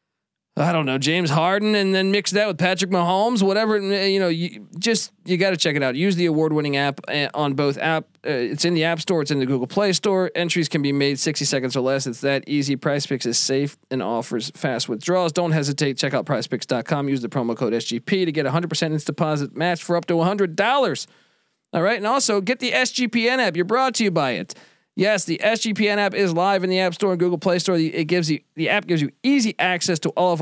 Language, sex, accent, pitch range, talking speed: English, male, American, 140-190 Hz, 245 wpm